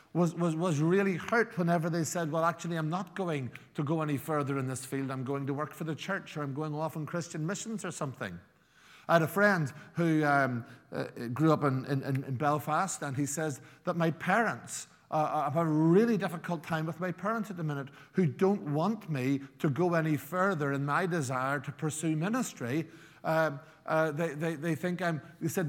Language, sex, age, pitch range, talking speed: English, male, 50-69, 150-190 Hz, 215 wpm